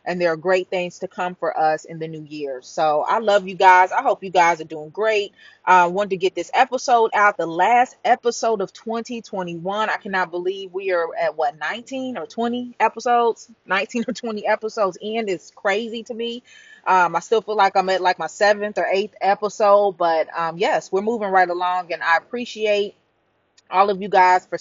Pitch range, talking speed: 170-210 Hz, 210 wpm